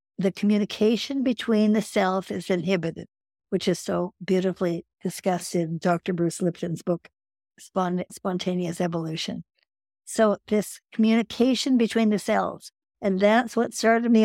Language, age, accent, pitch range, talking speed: English, 60-79, American, 180-215 Hz, 125 wpm